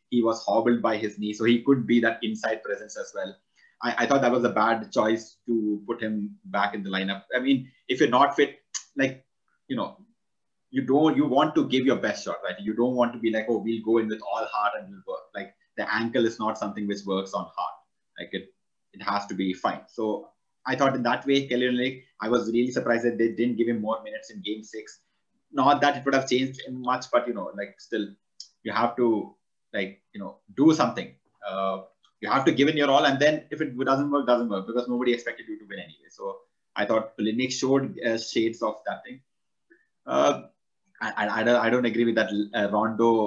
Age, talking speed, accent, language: 30-49, 230 wpm, Indian, English